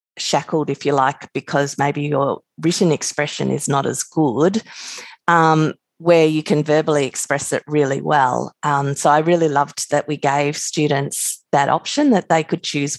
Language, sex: English, female